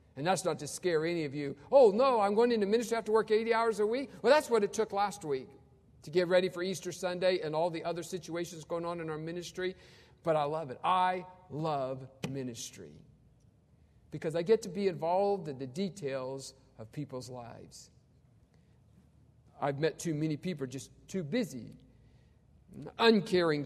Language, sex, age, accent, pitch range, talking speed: English, male, 50-69, American, 150-205 Hz, 185 wpm